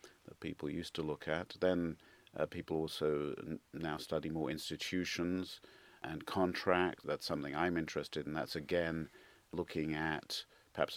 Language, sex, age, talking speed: English, male, 50-69, 150 wpm